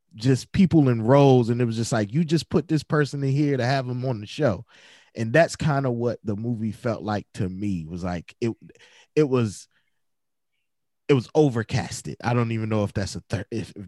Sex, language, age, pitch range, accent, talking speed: male, English, 20-39, 110-145 Hz, American, 215 wpm